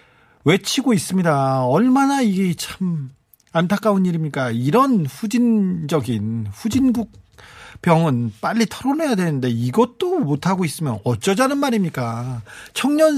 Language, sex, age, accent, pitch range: Korean, male, 40-59, native, 140-195 Hz